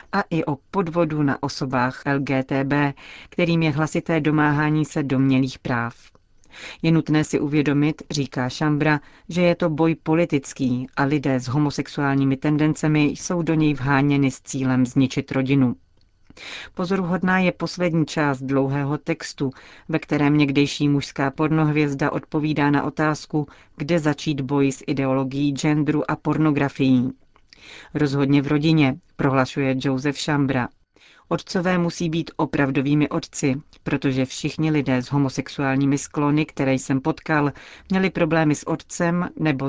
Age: 40-59